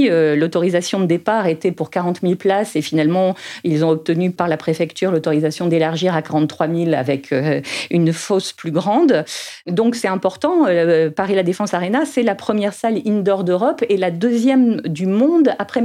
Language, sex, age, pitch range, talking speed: French, female, 40-59, 160-210 Hz, 170 wpm